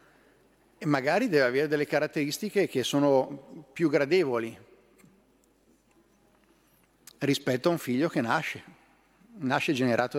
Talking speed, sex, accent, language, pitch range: 105 wpm, male, native, Italian, 130-160 Hz